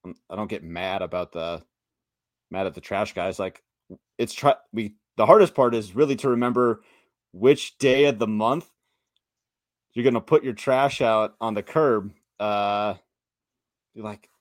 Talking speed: 160 wpm